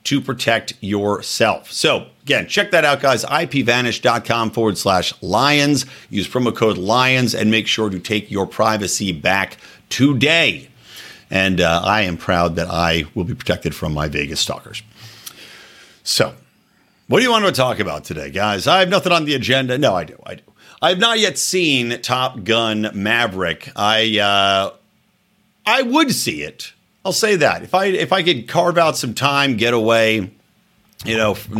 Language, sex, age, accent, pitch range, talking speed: English, male, 50-69, American, 105-145 Hz, 170 wpm